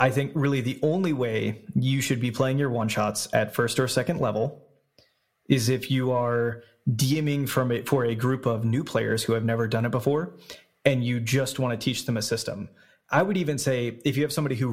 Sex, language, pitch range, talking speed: male, English, 120-140 Hz, 220 wpm